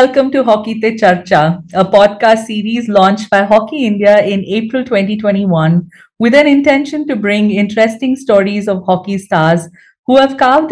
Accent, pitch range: Indian, 185-225 Hz